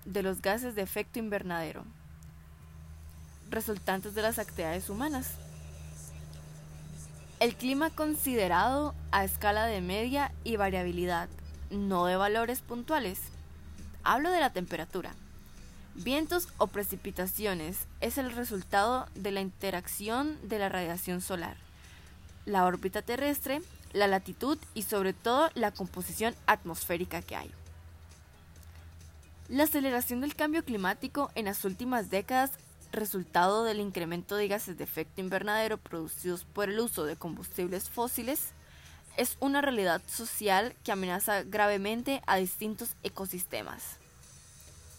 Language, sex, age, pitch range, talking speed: Spanish, female, 20-39, 165-230 Hz, 115 wpm